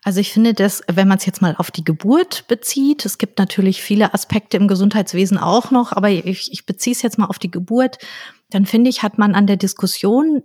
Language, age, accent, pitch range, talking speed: German, 40-59, German, 195-225 Hz, 225 wpm